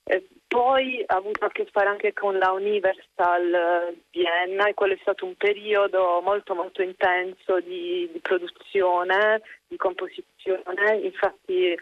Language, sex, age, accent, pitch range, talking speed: Italian, female, 30-49, native, 175-205 Hz, 130 wpm